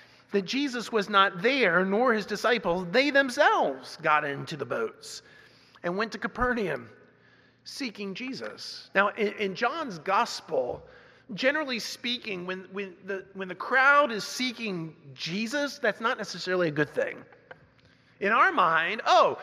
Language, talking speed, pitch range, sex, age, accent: English, 140 wpm, 190-260 Hz, male, 40-59, American